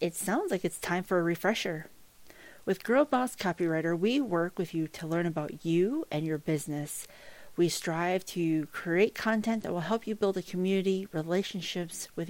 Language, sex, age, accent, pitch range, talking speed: English, female, 40-59, American, 165-195 Hz, 180 wpm